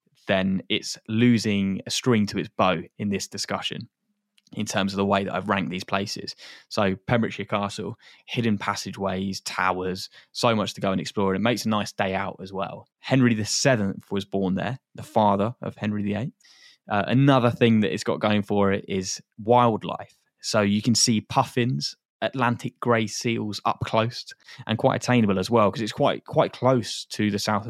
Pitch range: 100-120 Hz